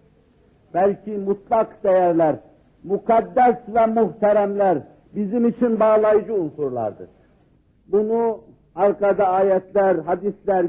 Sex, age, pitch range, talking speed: male, 50-69, 190-225 Hz, 80 wpm